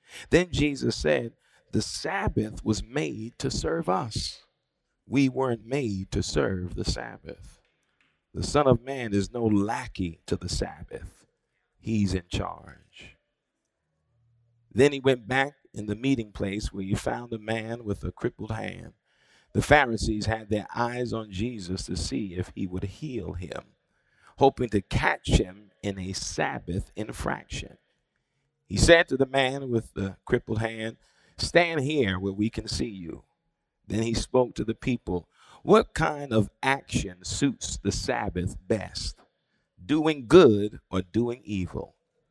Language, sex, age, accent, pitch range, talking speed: English, male, 50-69, American, 95-130 Hz, 150 wpm